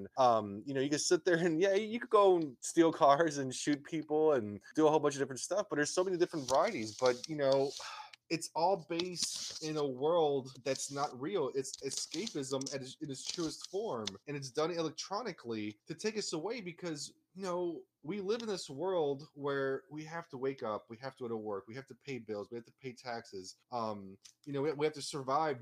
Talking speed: 225 wpm